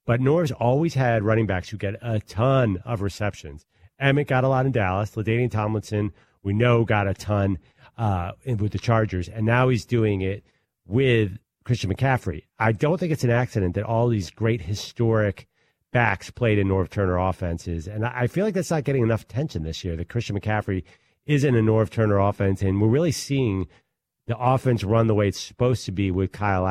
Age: 40-59